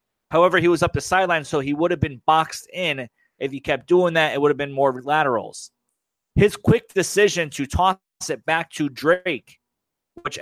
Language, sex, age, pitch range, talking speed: English, male, 30-49, 140-175 Hz, 195 wpm